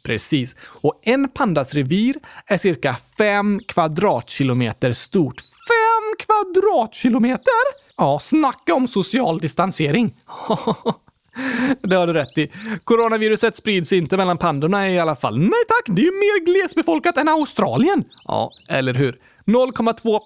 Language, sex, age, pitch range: Swedish, male, 30-49, 155-250 Hz